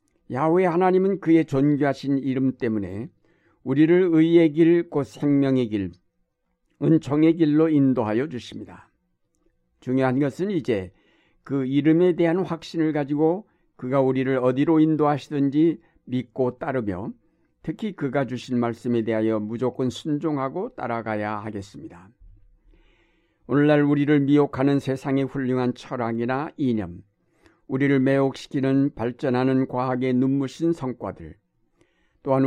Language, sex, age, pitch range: Korean, male, 60-79, 120-150 Hz